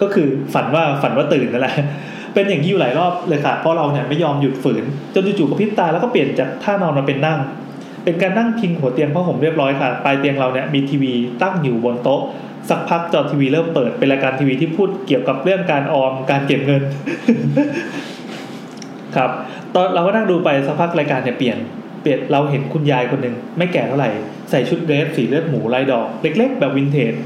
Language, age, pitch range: English, 20-39, 140-185 Hz